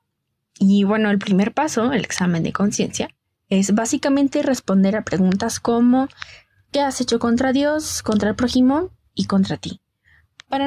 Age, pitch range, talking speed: 10-29, 195-255 Hz, 150 wpm